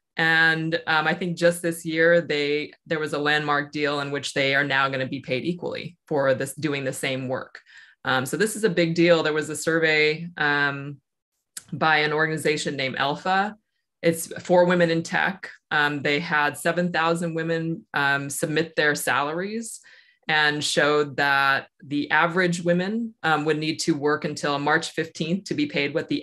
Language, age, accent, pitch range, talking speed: English, 20-39, American, 145-170 Hz, 180 wpm